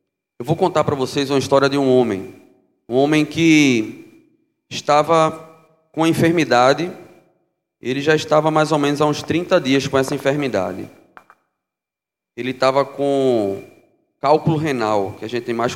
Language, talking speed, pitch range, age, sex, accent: Portuguese, 150 wpm, 135-165 Hz, 20-39, male, Brazilian